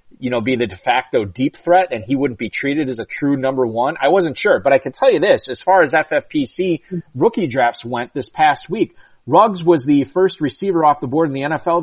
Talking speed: 245 wpm